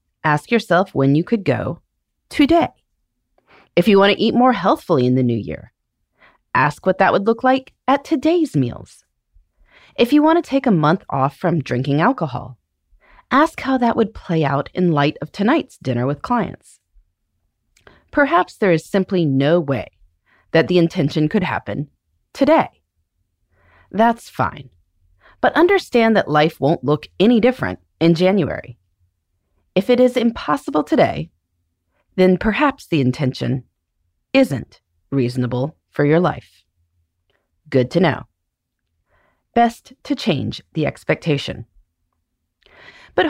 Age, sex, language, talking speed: 30-49, female, English, 135 wpm